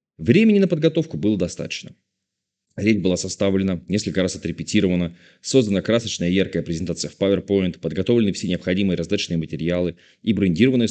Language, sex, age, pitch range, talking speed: Russian, male, 30-49, 90-130 Hz, 140 wpm